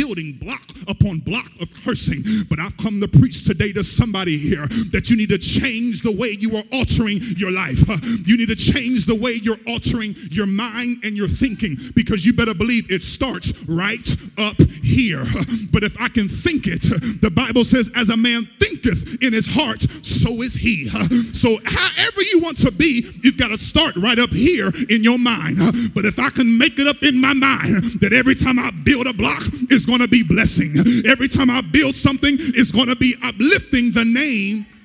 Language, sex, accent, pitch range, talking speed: English, male, American, 165-245 Hz, 205 wpm